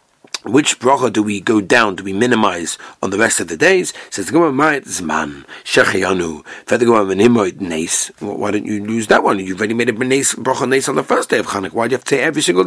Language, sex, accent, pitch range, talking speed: English, male, British, 105-140 Hz, 195 wpm